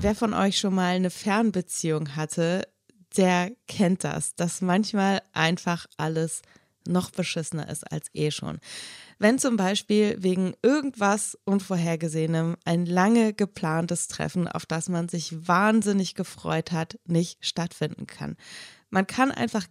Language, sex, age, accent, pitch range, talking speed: German, female, 20-39, German, 170-215 Hz, 135 wpm